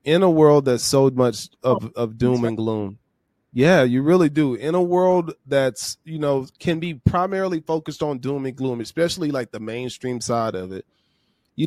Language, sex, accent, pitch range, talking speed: English, male, American, 115-150 Hz, 190 wpm